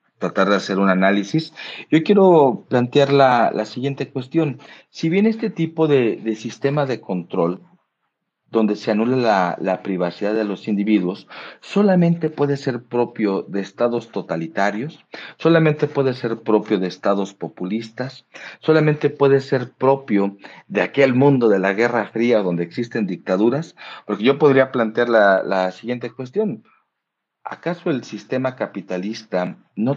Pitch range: 95-130 Hz